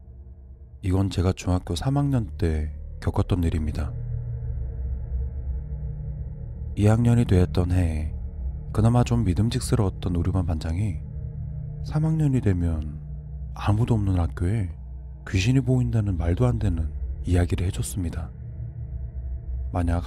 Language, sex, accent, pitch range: Korean, male, native, 75-105 Hz